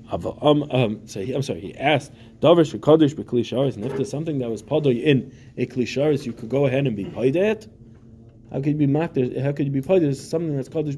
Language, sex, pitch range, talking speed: English, male, 115-150 Hz, 220 wpm